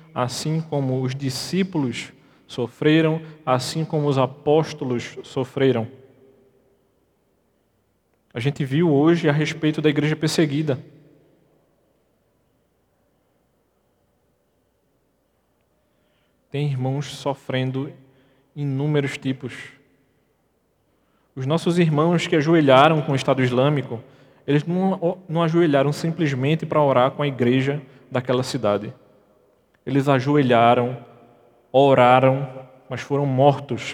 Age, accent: 20-39, Brazilian